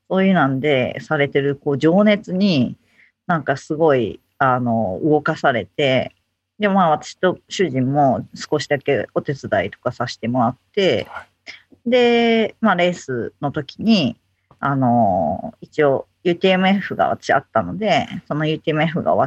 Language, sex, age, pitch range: Japanese, female, 40-59, 135-190 Hz